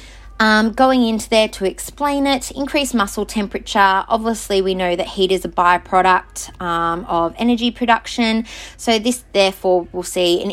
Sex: female